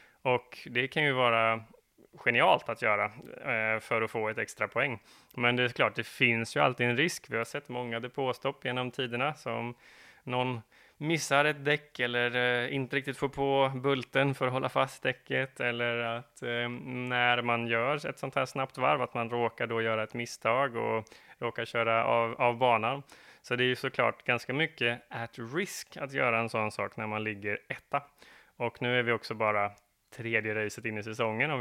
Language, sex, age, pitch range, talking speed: Swedish, male, 20-39, 115-130 Hz, 195 wpm